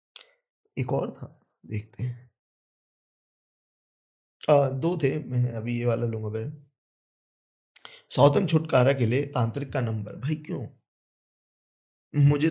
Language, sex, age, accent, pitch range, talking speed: Hindi, male, 20-39, native, 125-185 Hz, 55 wpm